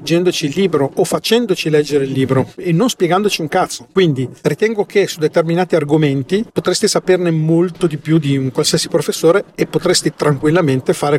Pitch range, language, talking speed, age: 145-170 Hz, Italian, 170 wpm, 40-59